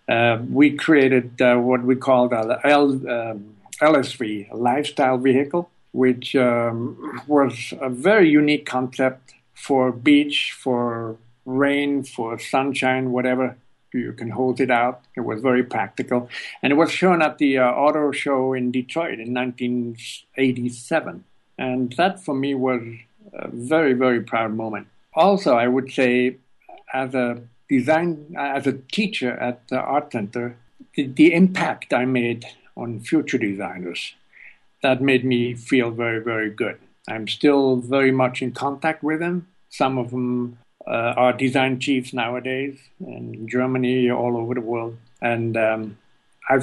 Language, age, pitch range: English, 60-79, 120-140 Hz